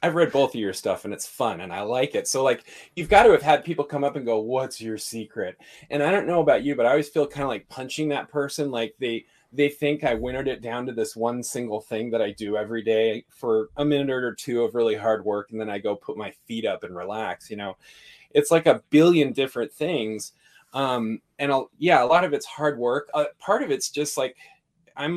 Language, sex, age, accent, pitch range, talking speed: English, male, 20-39, American, 115-145 Hz, 250 wpm